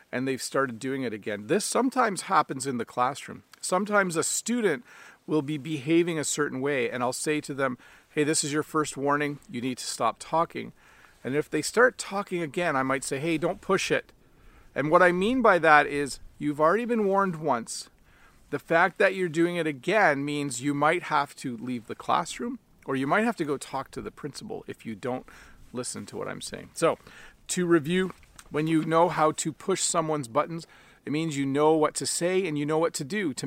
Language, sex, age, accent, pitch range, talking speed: English, male, 40-59, American, 140-175 Hz, 215 wpm